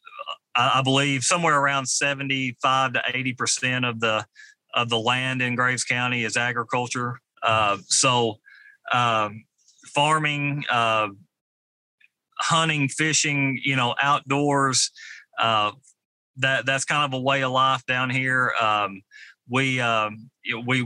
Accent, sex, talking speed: American, male, 120 wpm